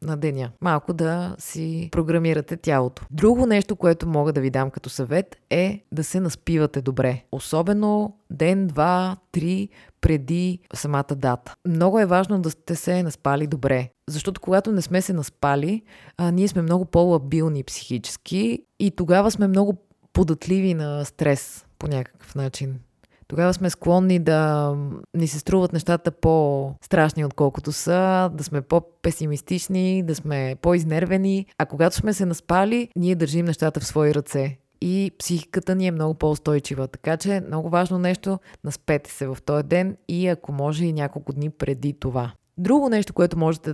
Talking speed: 155 wpm